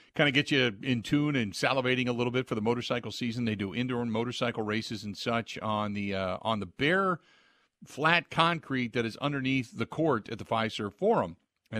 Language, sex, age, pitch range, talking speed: English, male, 50-69, 105-140 Hz, 205 wpm